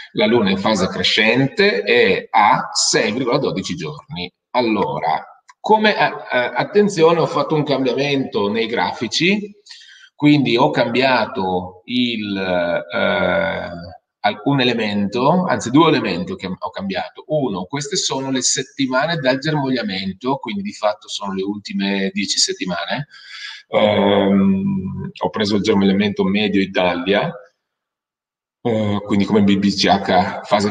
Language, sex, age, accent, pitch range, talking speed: Italian, male, 30-49, native, 100-155 Hz, 115 wpm